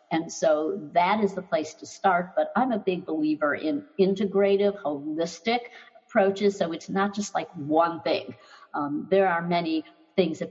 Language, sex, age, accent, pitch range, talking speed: English, female, 60-79, American, 160-200 Hz, 170 wpm